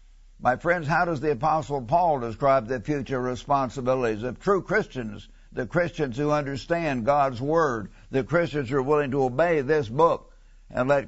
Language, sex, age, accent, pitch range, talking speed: English, male, 60-79, American, 135-170 Hz, 170 wpm